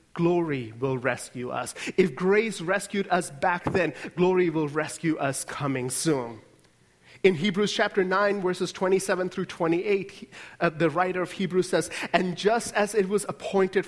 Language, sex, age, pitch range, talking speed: English, male, 30-49, 155-200 Hz, 155 wpm